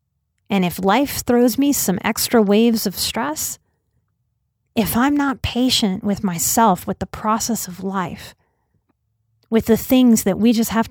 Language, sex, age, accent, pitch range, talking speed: English, female, 30-49, American, 180-230 Hz, 155 wpm